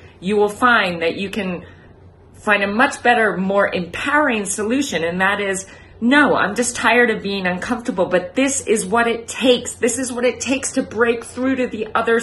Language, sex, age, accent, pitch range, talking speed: English, female, 40-59, American, 165-225 Hz, 195 wpm